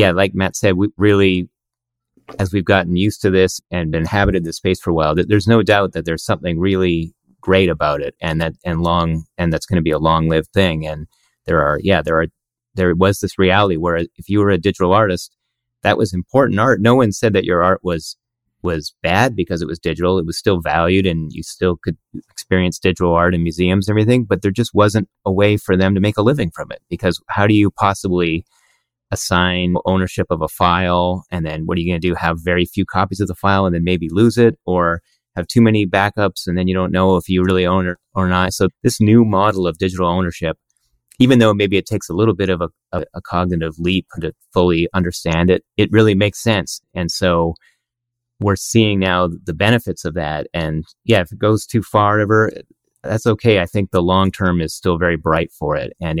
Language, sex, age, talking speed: English, male, 30-49, 225 wpm